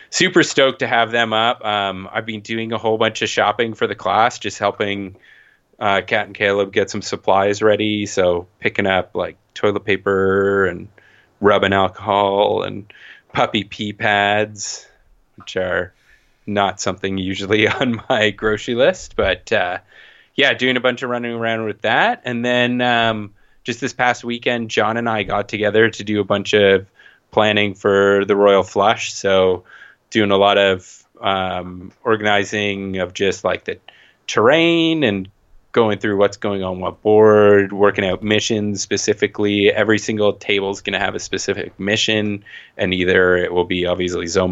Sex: male